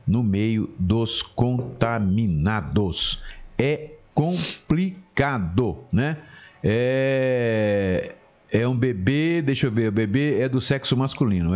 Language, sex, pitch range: Portuguese, male, 100-130 Hz